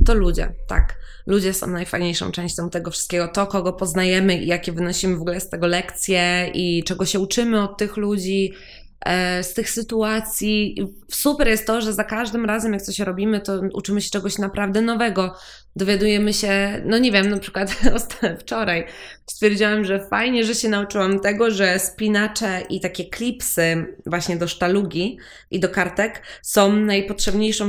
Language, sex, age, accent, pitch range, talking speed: Polish, female, 20-39, native, 185-220 Hz, 160 wpm